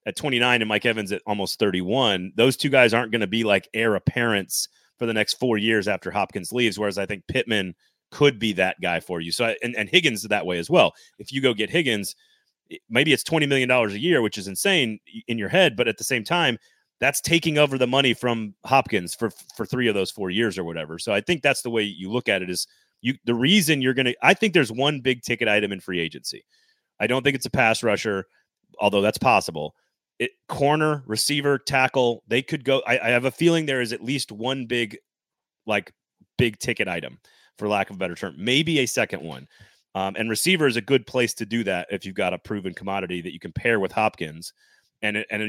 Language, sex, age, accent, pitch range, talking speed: English, male, 30-49, American, 105-135 Hz, 230 wpm